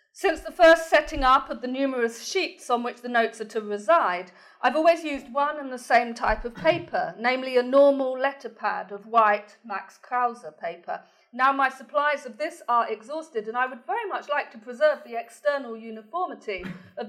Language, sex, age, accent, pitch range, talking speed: English, female, 40-59, British, 200-280 Hz, 195 wpm